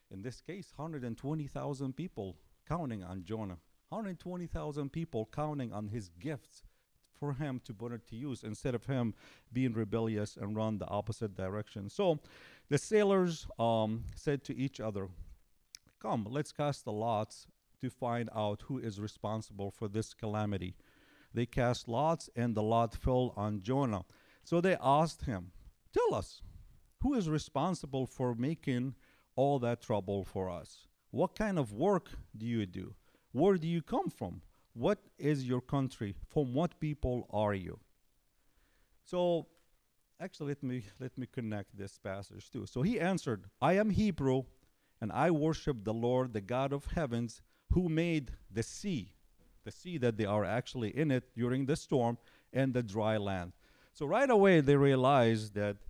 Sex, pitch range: male, 105-150 Hz